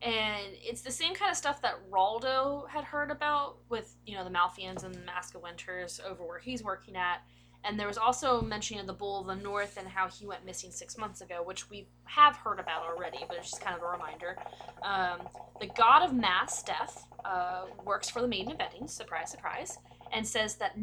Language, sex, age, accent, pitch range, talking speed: English, female, 20-39, American, 185-245 Hz, 225 wpm